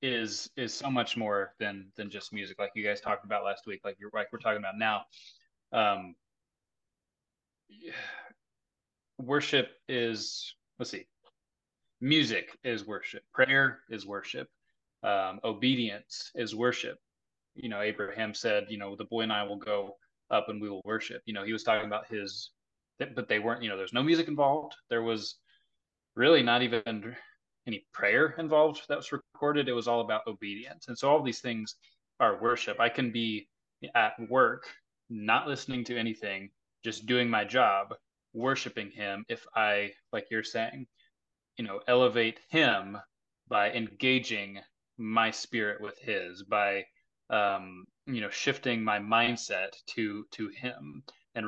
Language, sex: English, male